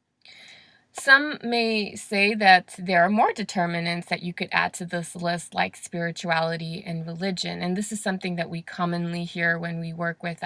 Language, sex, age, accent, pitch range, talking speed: English, female, 20-39, American, 175-215 Hz, 180 wpm